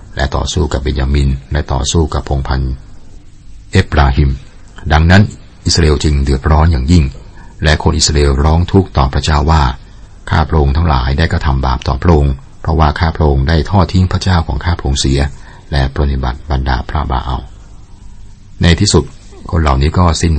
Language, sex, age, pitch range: Thai, male, 60-79, 70-95 Hz